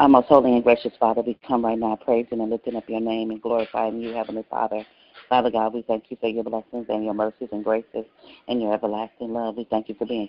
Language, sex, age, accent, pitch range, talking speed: English, female, 40-59, American, 110-125 Hz, 250 wpm